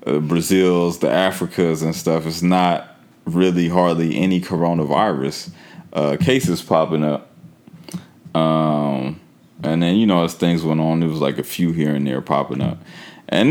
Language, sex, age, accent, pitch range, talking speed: English, male, 20-39, American, 75-90 Hz, 155 wpm